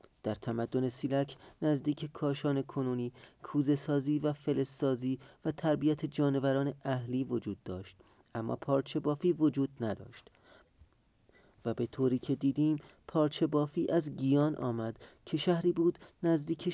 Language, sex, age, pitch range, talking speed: Persian, male, 30-49, 125-155 Hz, 120 wpm